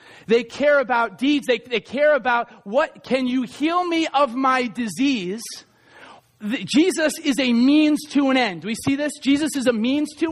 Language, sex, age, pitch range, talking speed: English, male, 40-59, 205-305 Hz, 185 wpm